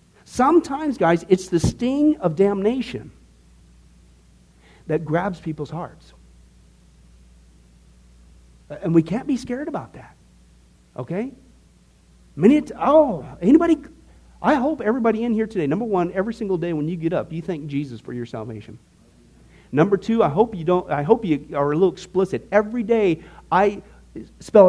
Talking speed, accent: 150 wpm, American